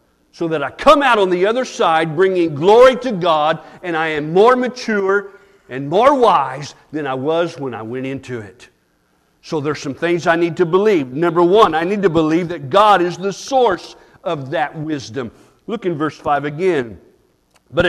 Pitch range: 155-210 Hz